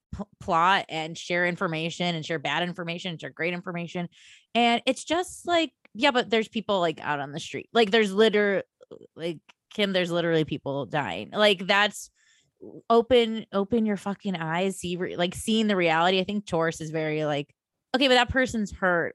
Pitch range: 160-210 Hz